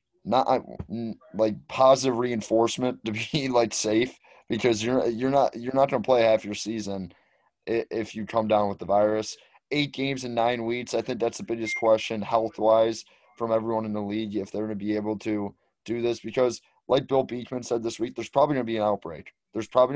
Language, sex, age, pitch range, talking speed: English, male, 20-39, 110-135 Hz, 210 wpm